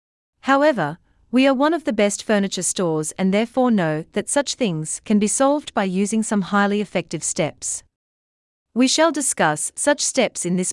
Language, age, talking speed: English, 40-59, 175 wpm